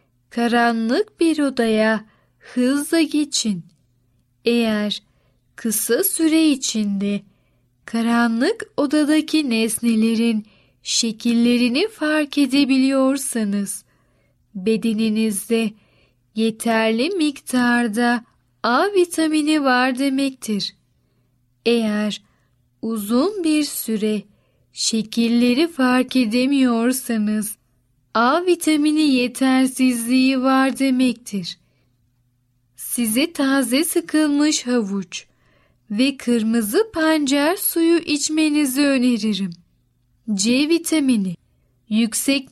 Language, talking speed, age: Turkish, 65 wpm, 10-29